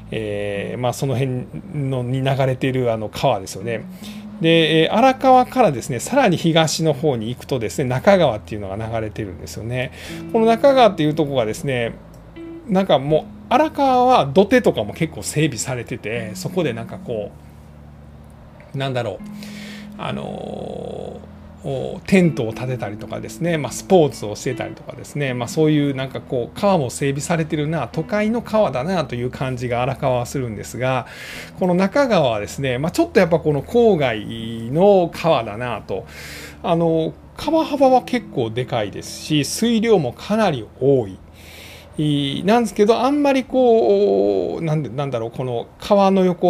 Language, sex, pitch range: Japanese, male, 115-180 Hz